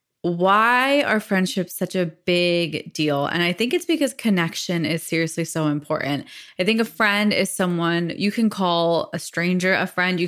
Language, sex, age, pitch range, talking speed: English, female, 20-39, 170-205 Hz, 180 wpm